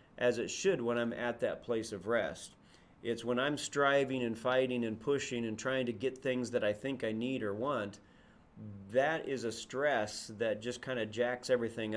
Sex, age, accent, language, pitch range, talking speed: male, 40-59, American, English, 115-135 Hz, 200 wpm